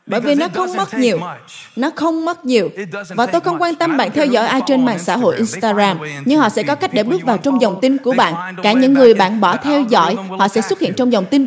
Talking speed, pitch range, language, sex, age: 265 wpm, 210-280 Hz, Vietnamese, female, 20-39